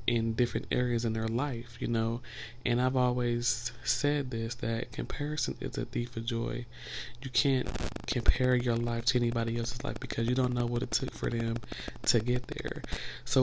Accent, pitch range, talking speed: American, 120-130 Hz, 190 wpm